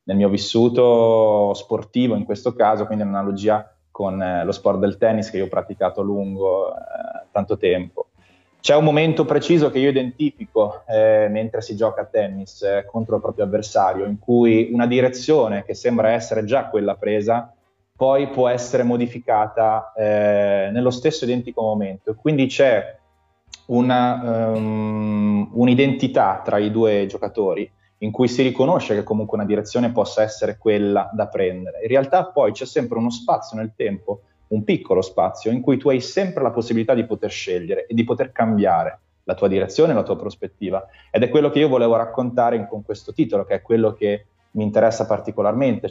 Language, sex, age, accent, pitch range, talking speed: Italian, male, 20-39, native, 105-125 Hz, 175 wpm